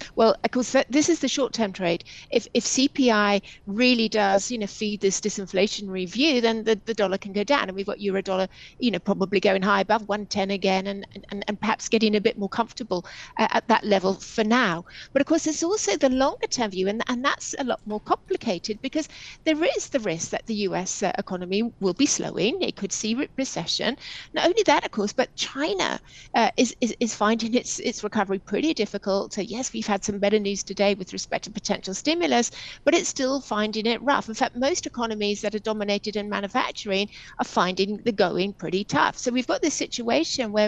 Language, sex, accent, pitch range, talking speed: English, female, British, 200-250 Hz, 210 wpm